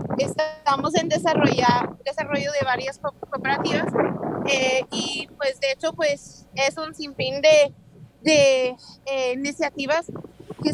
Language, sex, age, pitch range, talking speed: English, female, 30-49, 255-310 Hz, 115 wpm